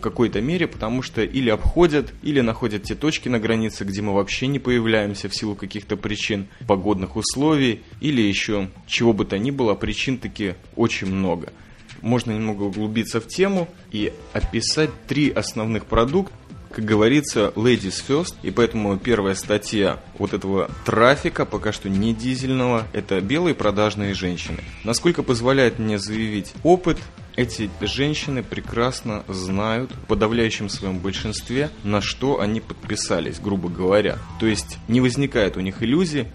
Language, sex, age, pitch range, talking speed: Russian, male, 20-39, 100-120 Hz, 145 wpm